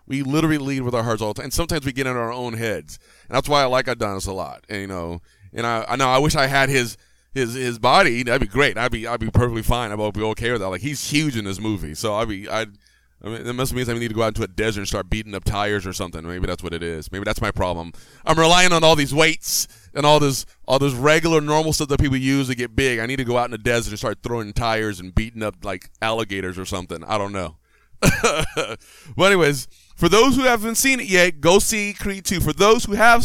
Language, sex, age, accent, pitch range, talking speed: English, male, 30-49, American, 115-165 Hz, 275 wpm